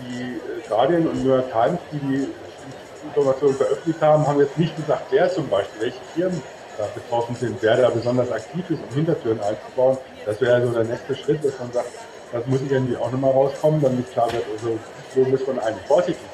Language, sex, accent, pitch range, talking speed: German, male, German, 120-145 Hz, 205 wpm